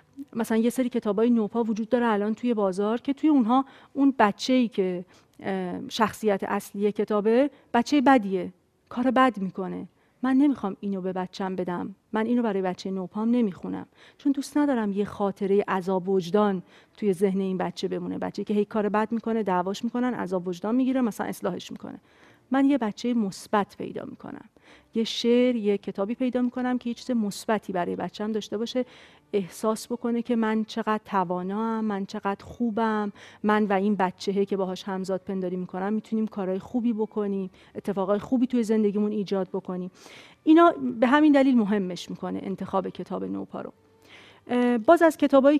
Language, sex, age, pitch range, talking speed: Persian, female, 40-59, 195-245 Hz, 170 wpm